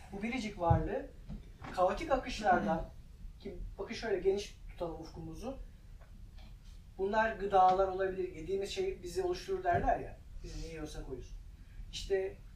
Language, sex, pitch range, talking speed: Turkish, male, 160-225 Hz, 120 wpm